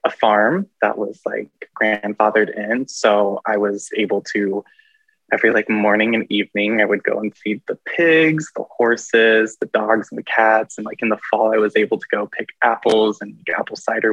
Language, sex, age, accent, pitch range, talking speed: English, male, 20-39, American, 105-145 Hz, 195 wpm